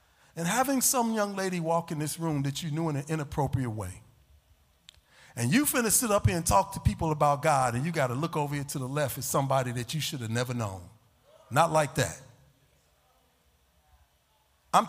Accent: American